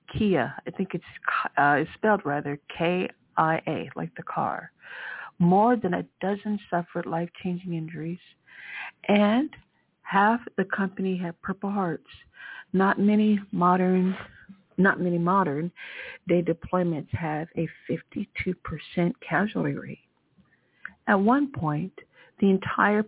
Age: 50-69